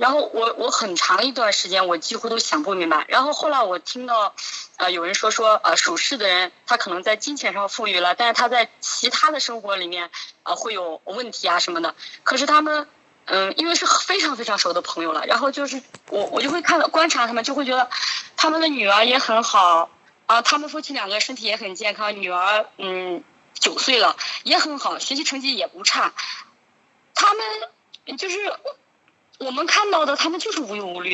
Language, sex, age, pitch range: Chinese, female, 20-39, 195-275 Hz